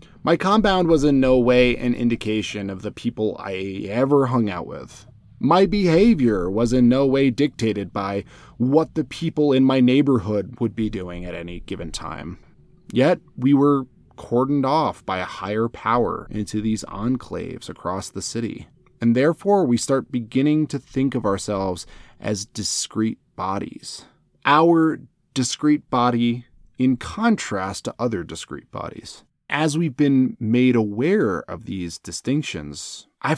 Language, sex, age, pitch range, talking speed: English, male, 20-39, 110-150 Hz, 145 wpm